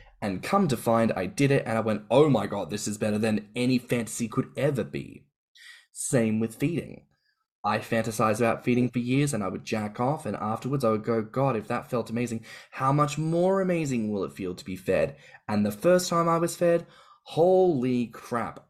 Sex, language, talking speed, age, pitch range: male, English, 210 wpm, 10-29, 110-145 Hz